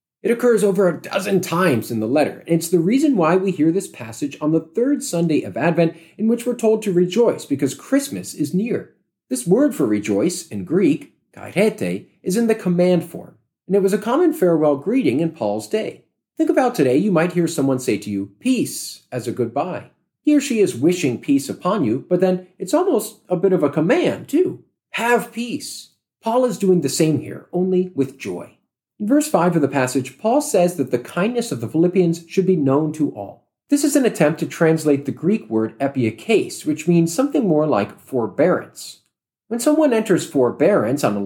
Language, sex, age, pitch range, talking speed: English, male, 40-59, 145-220 Hz, 205 wpm